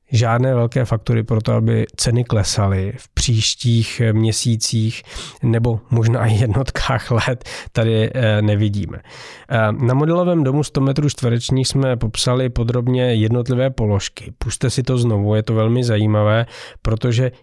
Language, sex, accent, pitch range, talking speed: Czech, male, native, 110-125 Hz, 125 wpm